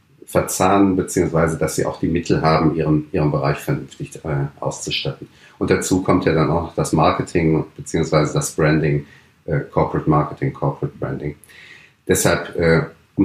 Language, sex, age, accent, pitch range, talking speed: German, male, 40-59, German, 75-90 Hz, 145 wpm